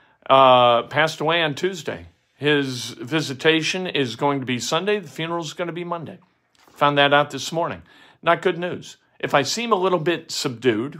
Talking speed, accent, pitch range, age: 185 wpm, American, 135-185 Hz, 50-69